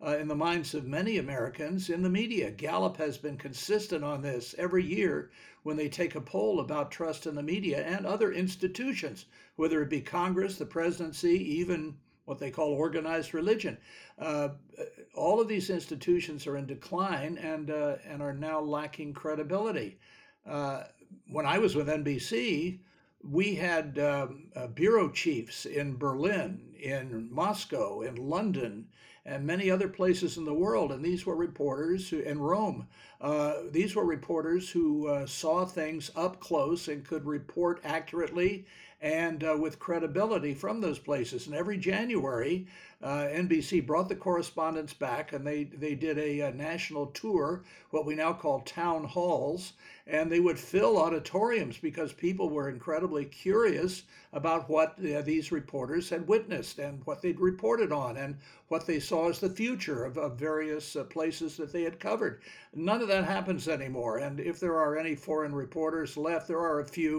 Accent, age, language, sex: American, 60-79, English, male